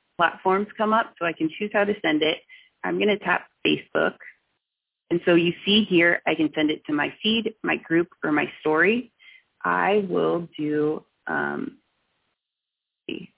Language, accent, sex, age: English, American, female, 30-49